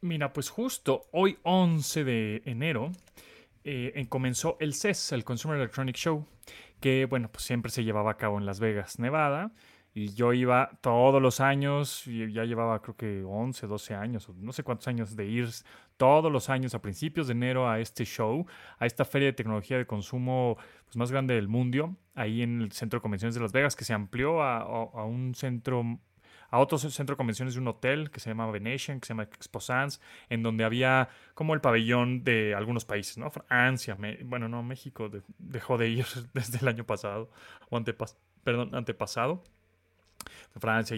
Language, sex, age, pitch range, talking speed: English, male, 30-49, 110-135 Hz, 190 wpm